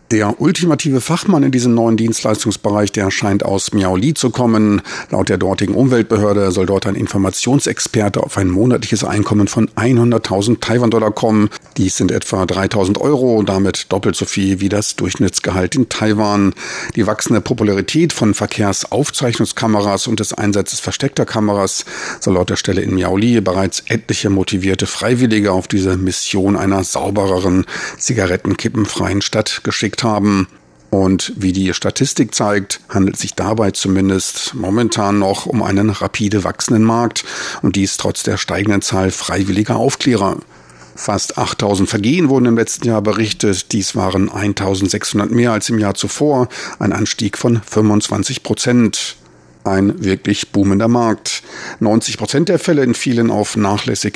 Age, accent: 40-59, German